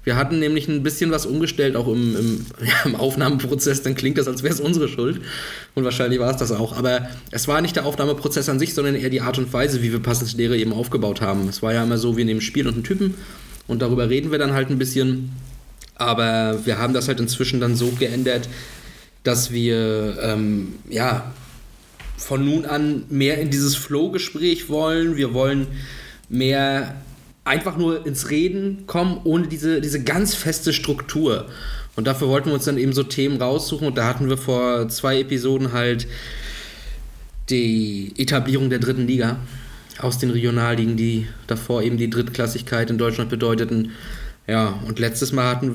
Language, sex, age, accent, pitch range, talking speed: German, male, 20-39, German, 115-140 Hz, 185 wpm